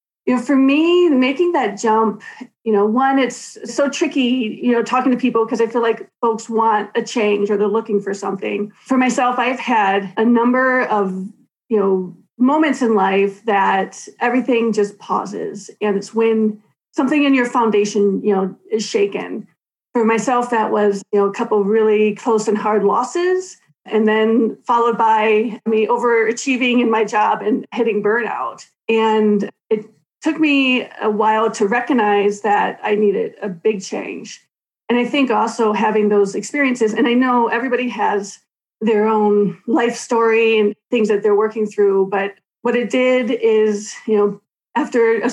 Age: 30-49